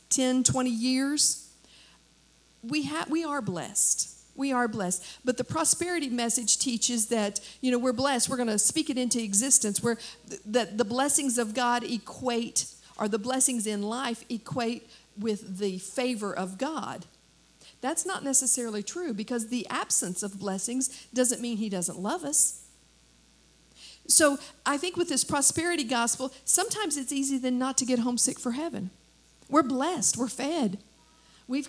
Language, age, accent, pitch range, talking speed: English, 50-69, American, 215-270 Hz, 155 wpm